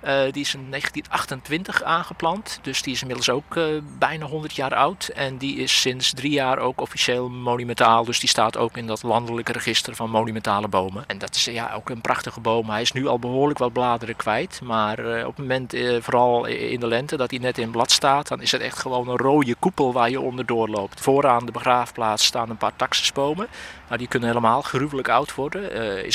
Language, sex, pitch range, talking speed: Dutch, male, 115-135 Hz, 220 wpm